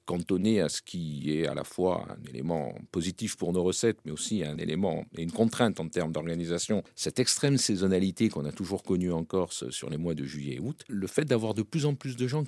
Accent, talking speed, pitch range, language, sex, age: French, 235 wpm, 85-115 Hz, French, male, 50-69